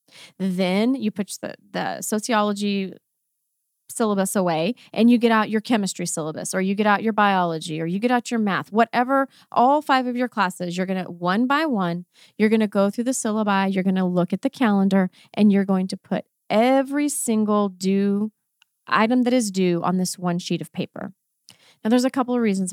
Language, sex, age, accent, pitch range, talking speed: English, female, 30-49, American, 185-245 Hz, 205 wpm